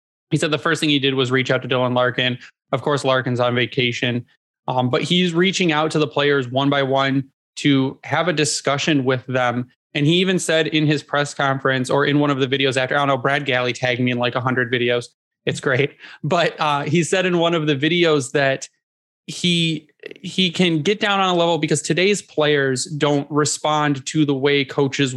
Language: English